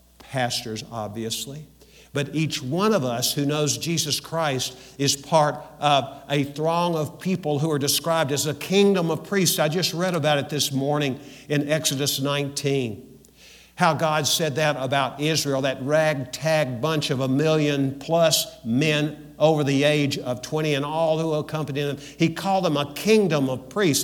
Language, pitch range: English, 130-160 Hz